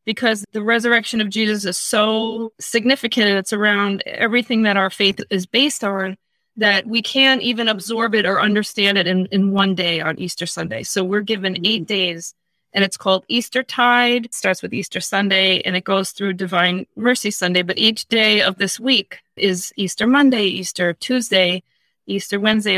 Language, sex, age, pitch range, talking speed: English, female, 30-49, 195-235 Hz, 175 wpm